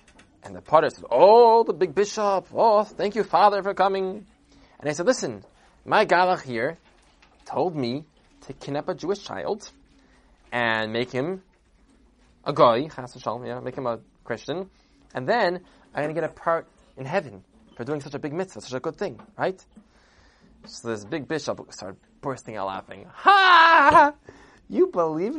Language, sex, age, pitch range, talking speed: English, male, 20-39, 125-205 Hz, 170 wpm